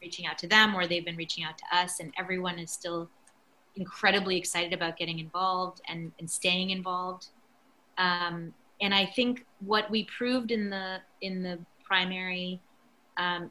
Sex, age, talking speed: female, 30-49, 165 wpm